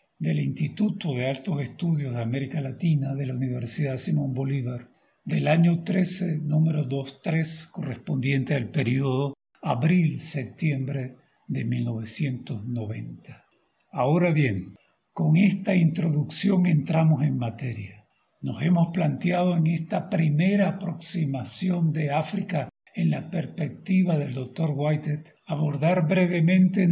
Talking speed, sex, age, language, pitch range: 110 wpm, male, 60-79, Spanish, 140-175 Hz